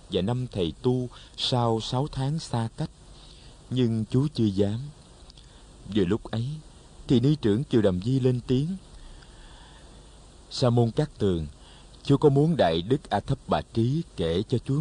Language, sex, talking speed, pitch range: Vietnamese, male, 165 wpm, 95-130 Hz